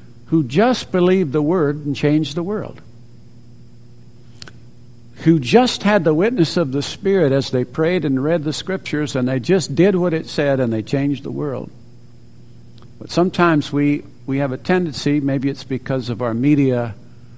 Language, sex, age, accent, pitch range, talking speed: English, male, 60-79, American, 120-145 Hz, 170 wpm